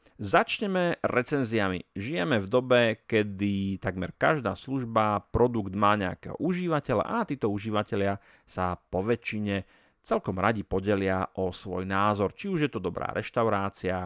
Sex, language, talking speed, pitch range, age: male, Slovak, 130 wpm, 95-120 Hz, 40-59